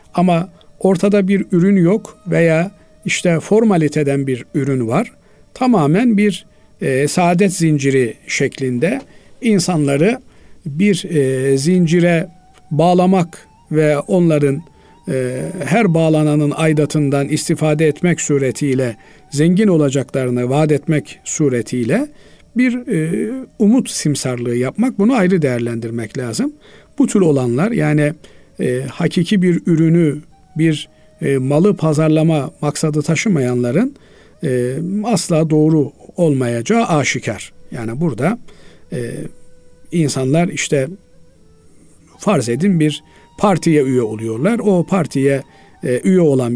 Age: 50-69